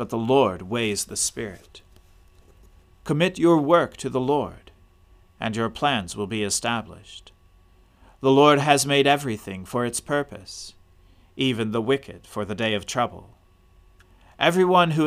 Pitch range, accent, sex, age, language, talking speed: 95-130 Hz, American, male, 40-59, English, 145 wpm